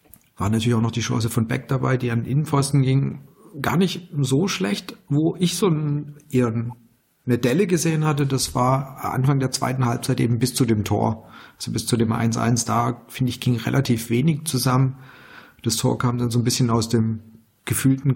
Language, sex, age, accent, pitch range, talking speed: German, male, 40-59, German, 120-140 Hz, 190 wpm